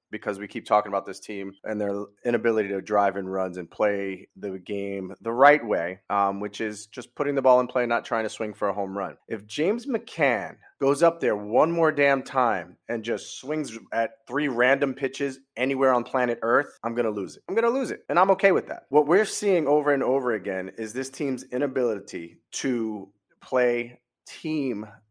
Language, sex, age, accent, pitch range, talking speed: English, male, 30-49, American, 115-150 Hz, 210 wpm